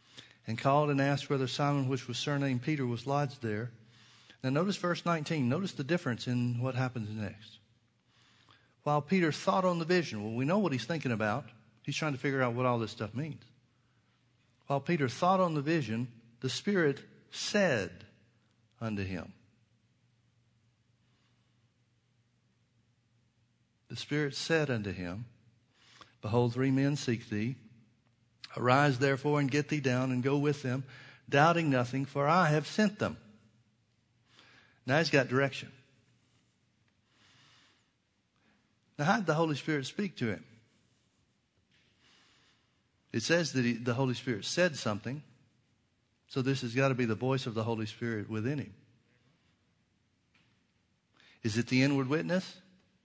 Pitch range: 115-140 Hz